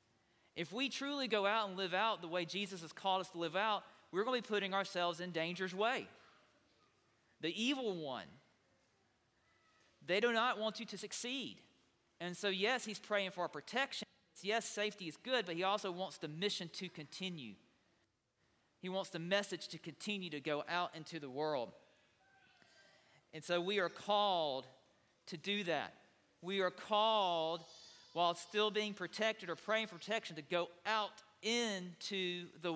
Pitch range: 170-210 Hz